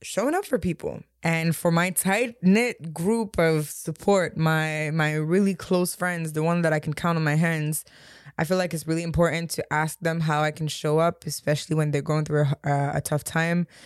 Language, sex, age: English, female, 20-39